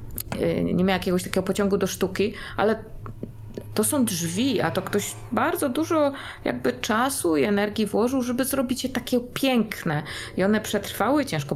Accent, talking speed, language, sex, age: native, 155 wpm, Polish, female, 20-39